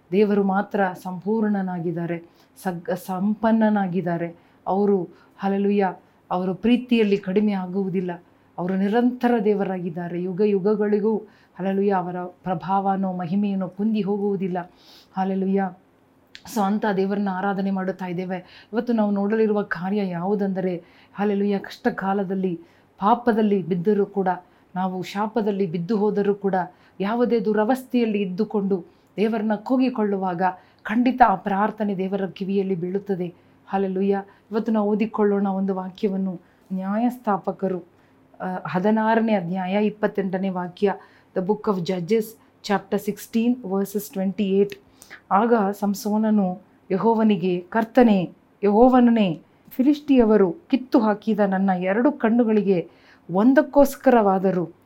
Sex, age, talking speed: female, 30-49, 95 wpm